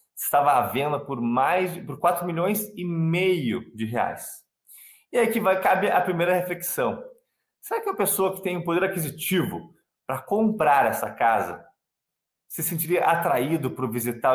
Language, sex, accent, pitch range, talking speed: Portuguese, male, Brazilian, 140-195 Hz, 160 wpm